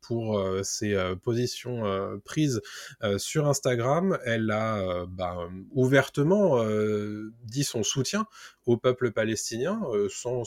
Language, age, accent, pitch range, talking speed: French, 20-39, French, 100-130 Hz, 140 wpm